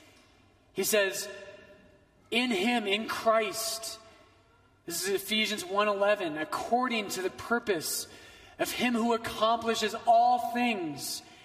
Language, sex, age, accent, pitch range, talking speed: English, male, 30-49, American, 195-240 Hz, 105 wpm